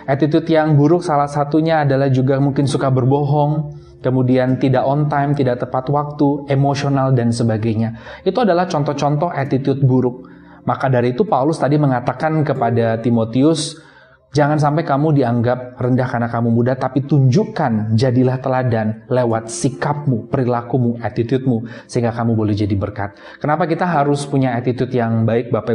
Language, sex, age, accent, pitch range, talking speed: Indonesian, male, 20-39, native, 125-145 Hz, 145 wpm